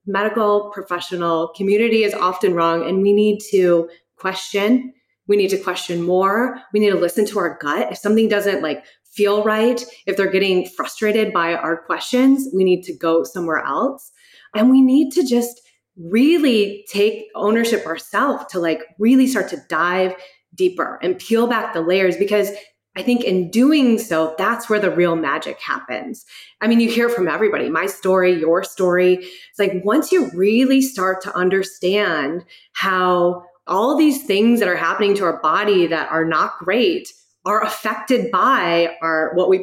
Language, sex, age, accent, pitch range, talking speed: English, female, 30-49, American, 180-230 Hz, 170 wpm